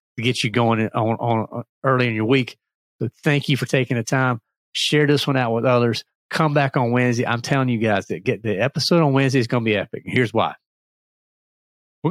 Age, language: 40-59, English